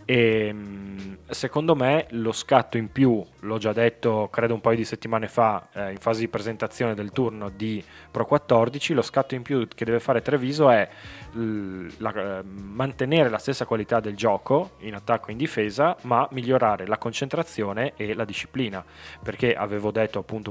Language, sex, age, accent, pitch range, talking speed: Italian, male, 10-29, native, 100-125 Hz, 175 wpm